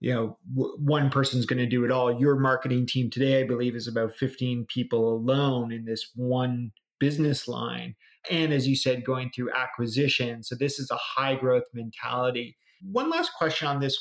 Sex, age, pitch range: male, 30-49, 125-150 Hz